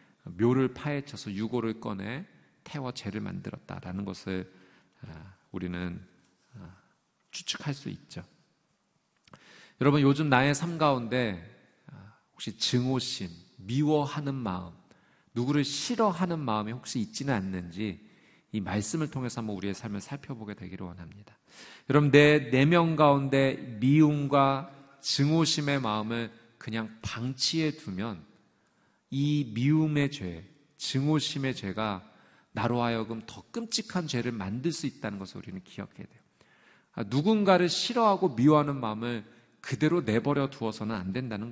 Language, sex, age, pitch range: Korean, male, 40-59, 110-155 Hz